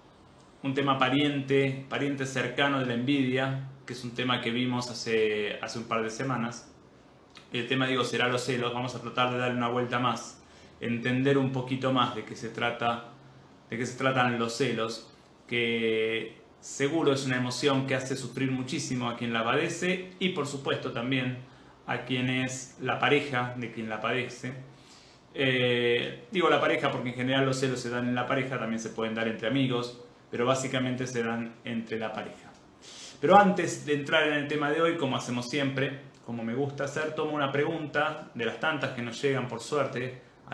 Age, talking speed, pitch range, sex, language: 30-49, 190 wpm, 120-140 Hz, male, Spanish